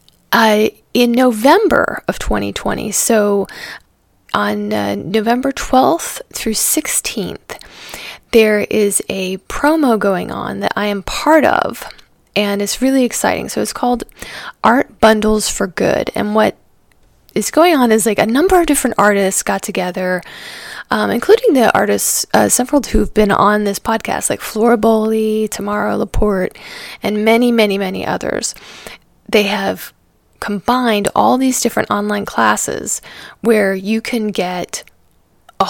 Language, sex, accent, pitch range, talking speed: English, female, American, 200-235 Hz, 135 wpm